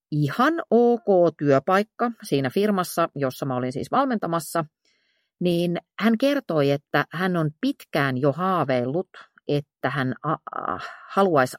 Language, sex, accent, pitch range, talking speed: Finnish, female, native, 135-200 Hz, 125 wpm